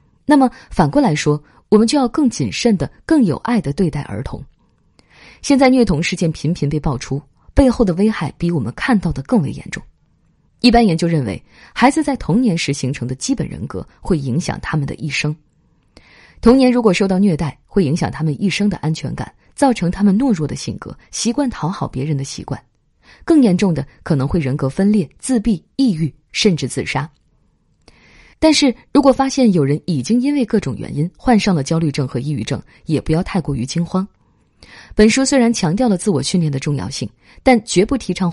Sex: female